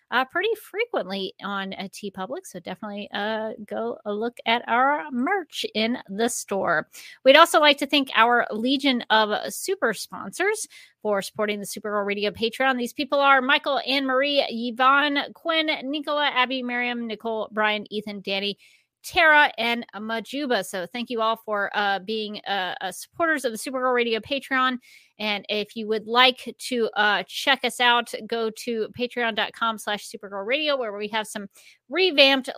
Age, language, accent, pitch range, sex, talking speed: 40-59, English, American, 210-260 Hz, female, 165 wpm